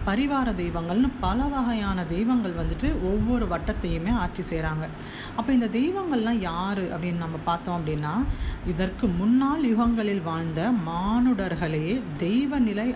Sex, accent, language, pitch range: female, native, Tamil, 180-245 Hz